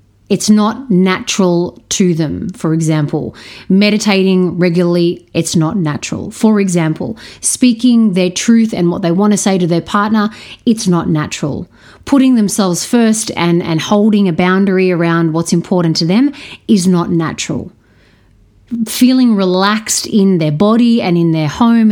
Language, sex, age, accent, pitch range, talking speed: English, female, 30-49, Australian, 170-215 Hz, 145 wpm